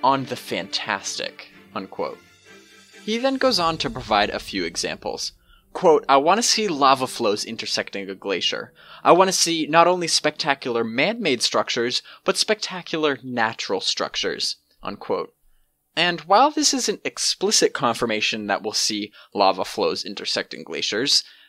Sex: male